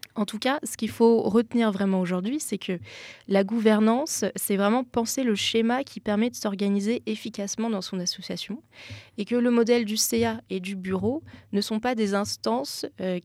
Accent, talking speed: French, 185 wpm